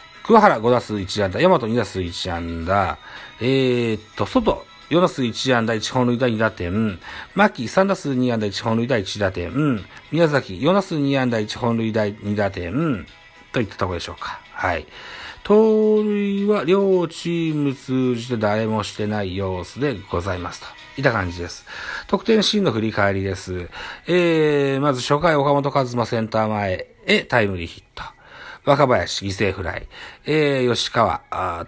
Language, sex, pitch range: Japanese, male, 105-150 Hz